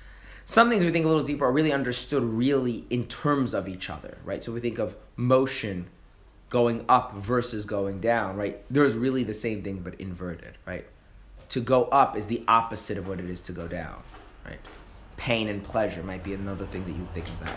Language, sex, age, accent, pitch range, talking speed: English, male, 30-49, American, 90-120 Hz, 210 wpm